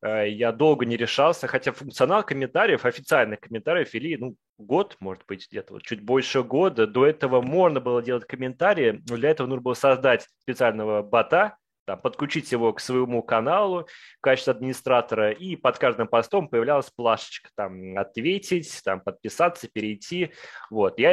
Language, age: Russian, 20-39